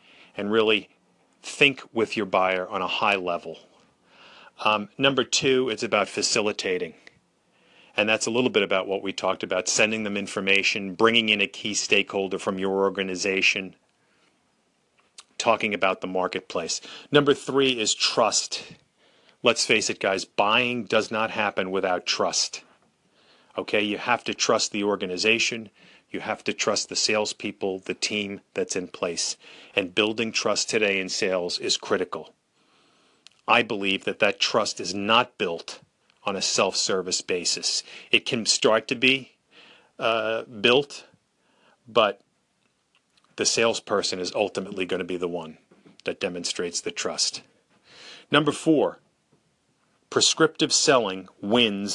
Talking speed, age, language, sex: 135 wpm, 40-59, English, male